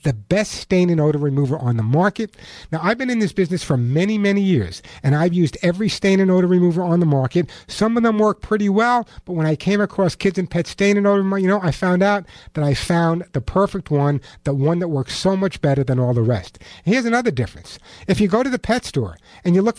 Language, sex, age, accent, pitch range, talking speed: English, male, 60-79, American, 155-215 Hz, 255 wpm